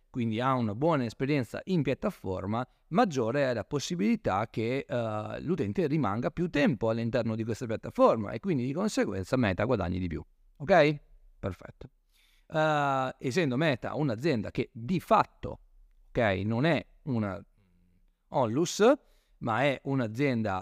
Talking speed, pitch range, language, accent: 135 wpm, 110-160 Hz, Italian, native